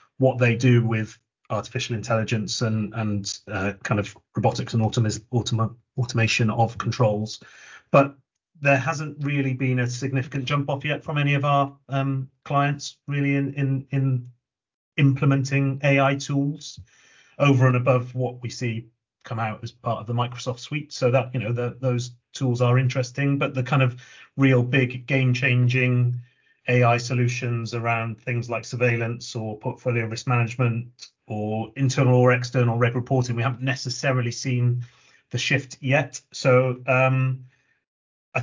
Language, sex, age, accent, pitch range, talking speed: English, male, 30-49, British, 120-135 Hz, 145 wpm